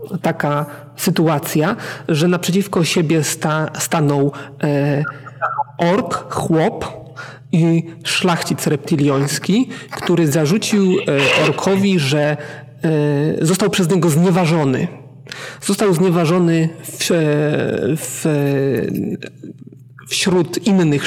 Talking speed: 85 wpm